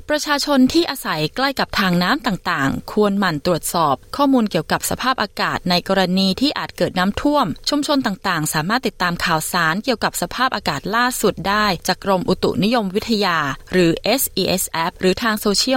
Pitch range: 180-240 Hz